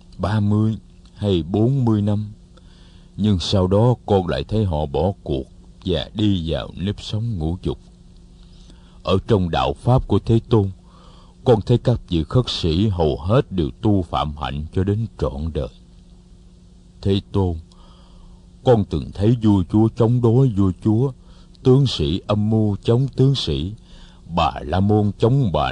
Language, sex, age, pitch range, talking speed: Vietnamese, male, 60-79, 85-110 Hz, 160 wpm